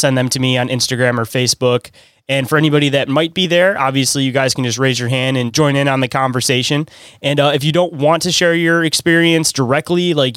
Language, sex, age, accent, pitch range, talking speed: English, male, 20-39, American, 125-145 Hz, 235 wpm